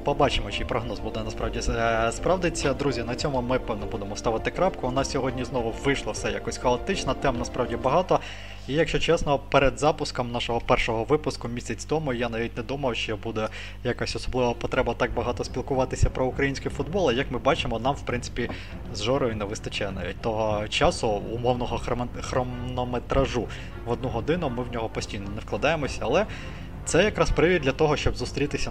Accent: native